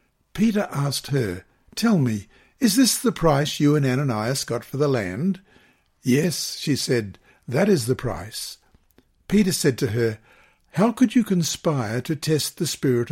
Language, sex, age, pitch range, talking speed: English, male, 60-79, 125-165 Hz, 160 wpm